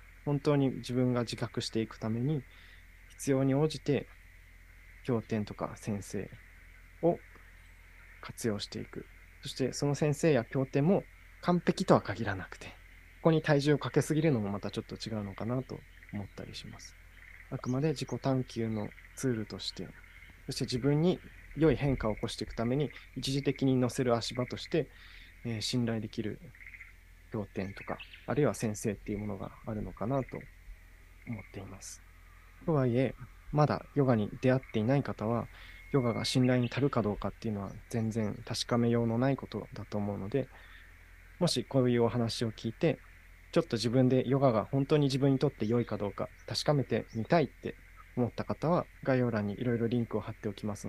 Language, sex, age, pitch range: Japanese, male, 20-39, 95-130 Hz